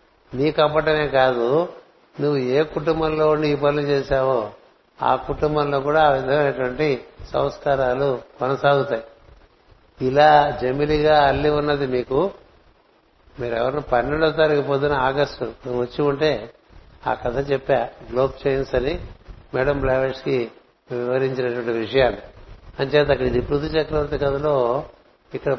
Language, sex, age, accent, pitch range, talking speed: Telugu, male, 60-79, native, 120-145 Hz, 105 wpm